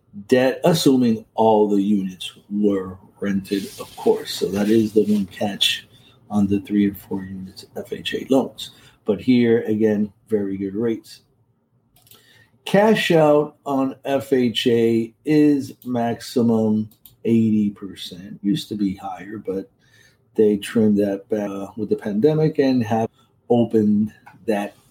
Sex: male